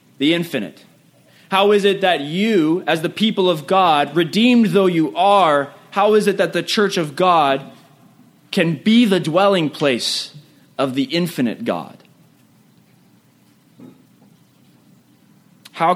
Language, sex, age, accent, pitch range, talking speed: English, male, 30-49, American, 145-190 Hz, 130 wpm